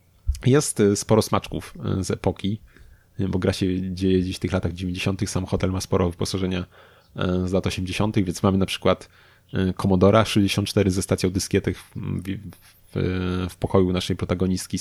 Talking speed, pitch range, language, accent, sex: 150 wpm, 90-100 Hz, Polish, native, male